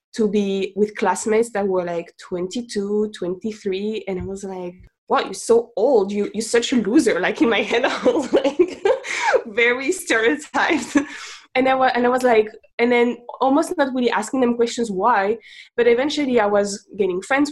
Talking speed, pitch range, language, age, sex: 170 wpm, 195-250 Hz, English, 20-39, female